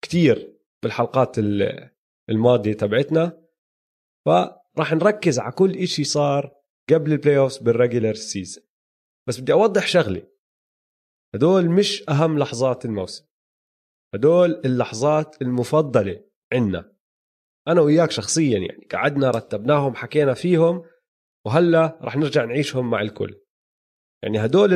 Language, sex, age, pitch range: Arabic, male, 30-49, 115-165 Hz